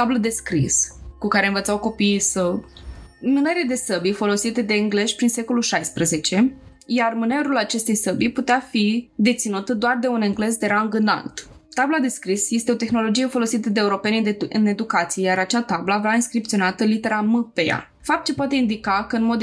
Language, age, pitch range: Romanian, 20-39, 200-240 Hz